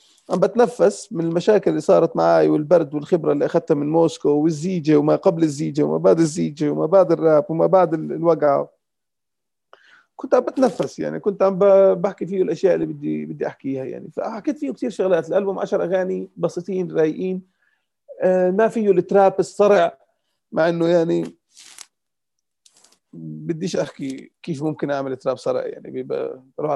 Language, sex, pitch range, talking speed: Arabic, male, 160-205 Hz, 150 wpm